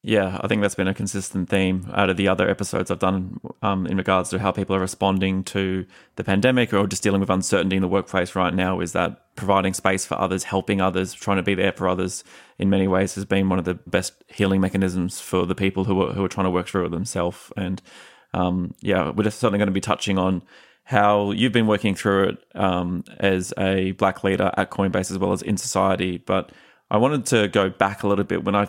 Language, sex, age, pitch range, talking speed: English, male, 20-39, 95-100 Hz, 235 wpm